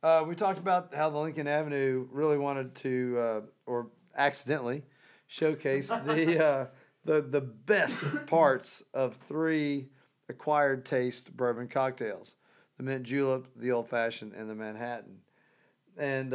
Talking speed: 130 wpm